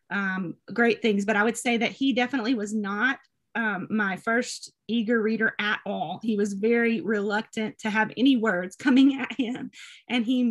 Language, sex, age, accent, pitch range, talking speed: English, female, 30-49, American, 205-250 Hz, 185 wpm